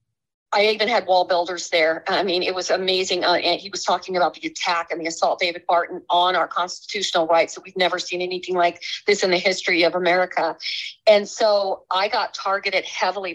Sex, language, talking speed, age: female, English, 205 wpm, 40-59